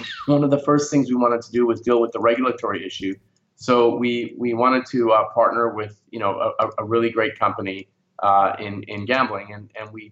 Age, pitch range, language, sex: 30-49, 100-120 Hz, English, male